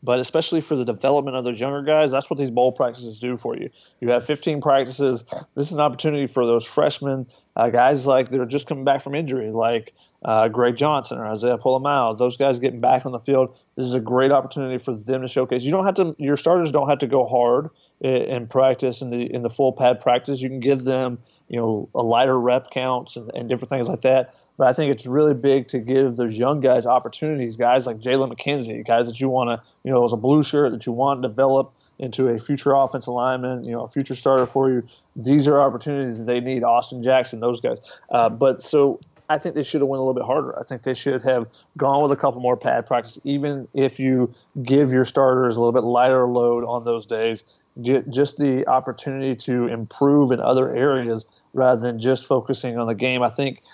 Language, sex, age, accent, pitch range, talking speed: English, male, 30-49, American, 120-140 Hz, 230 wpm